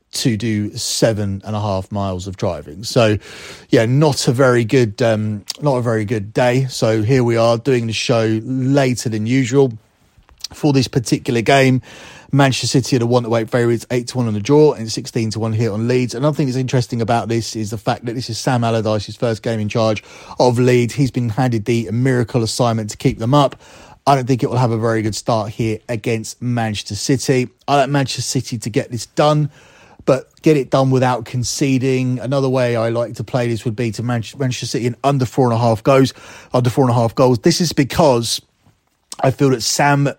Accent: British